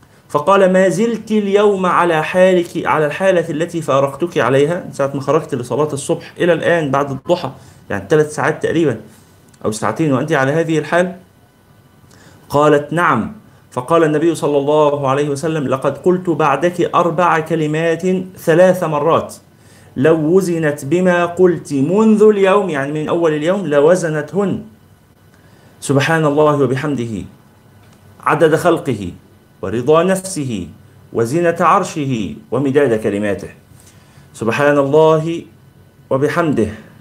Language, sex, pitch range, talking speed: Arabic, male, 125-170 Hz, 115 wpm